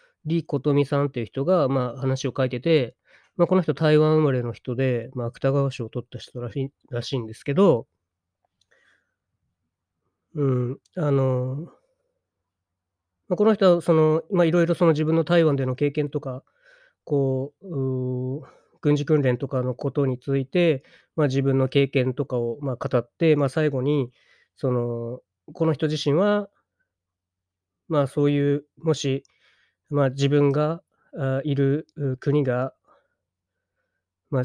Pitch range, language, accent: 130-160 Hz, Japanese, native